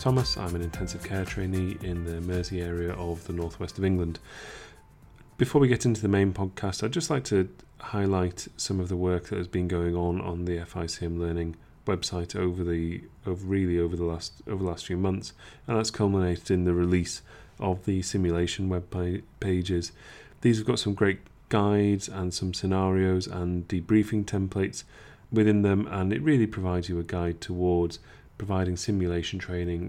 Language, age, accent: English, 30-49, British